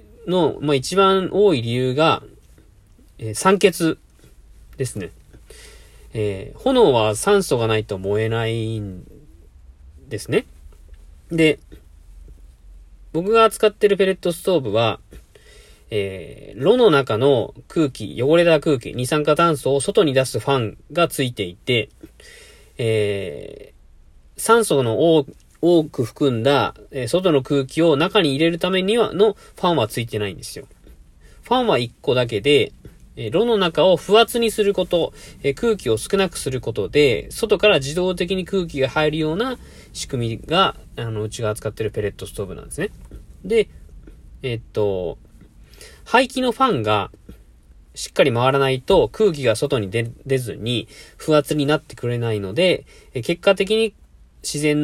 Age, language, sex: 40-59, Japanese, male